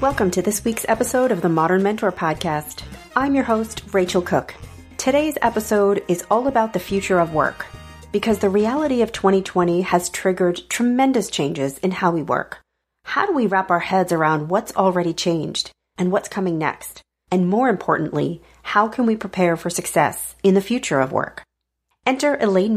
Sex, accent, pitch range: female, American, 175-225 Hz